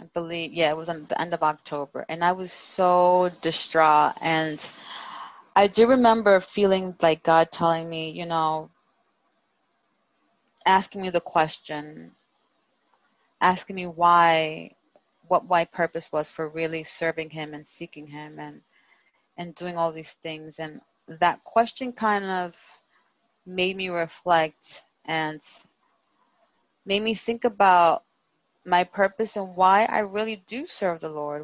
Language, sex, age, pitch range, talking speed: English, female, 20-39, 160-185 Hz, 140 wpm